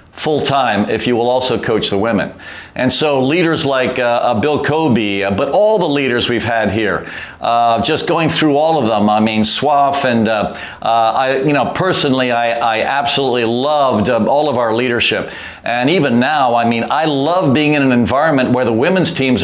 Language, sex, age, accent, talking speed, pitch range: English, male, 50-69, American, 200 wpm, 115-140 Hz